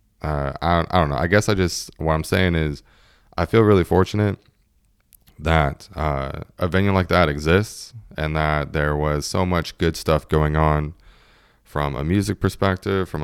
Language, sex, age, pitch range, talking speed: English, male, 20-39, 75-100 Hz, 180 wpm